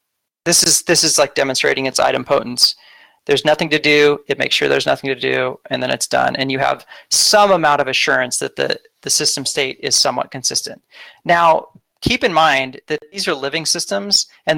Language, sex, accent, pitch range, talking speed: English, male, American, 140-165 Hz, 200 wpm